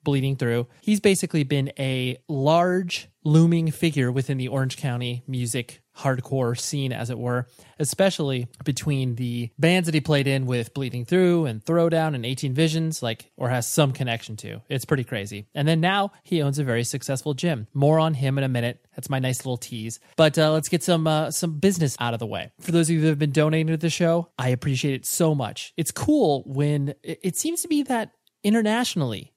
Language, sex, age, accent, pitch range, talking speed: English, male, 30-49, American, 130-165 Hz, 205 wpm